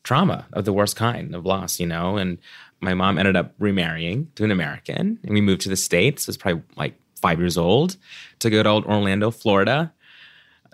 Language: English